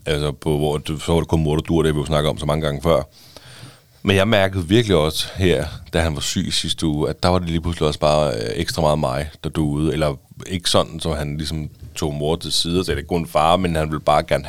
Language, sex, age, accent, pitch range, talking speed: Danish, male, 30-49, native, 75-90 Hz, 280 wpm